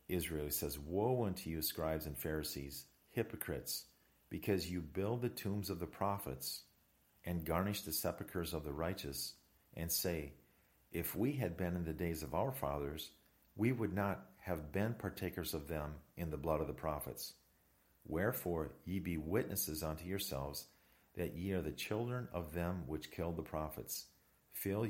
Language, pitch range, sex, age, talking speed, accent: English, 75-90 Hz, male, 50-69, 165 wpm, American